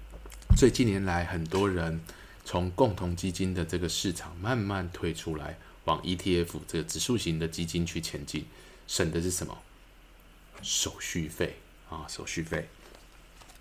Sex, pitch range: male, 80-100 Hz